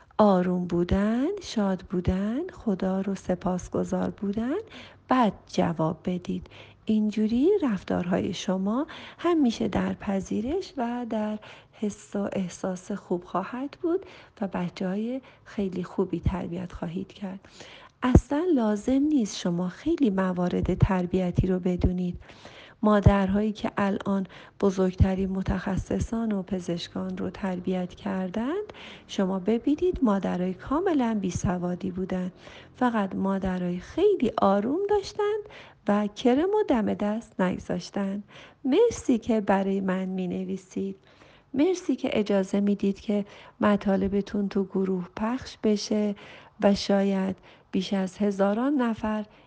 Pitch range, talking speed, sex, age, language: 185-235 Hz, 115 wpm, female, 40-59, Persian